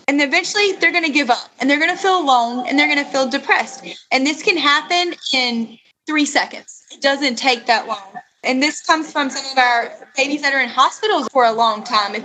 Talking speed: 235 wpm